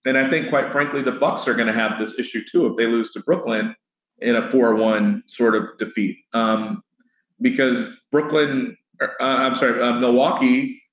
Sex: male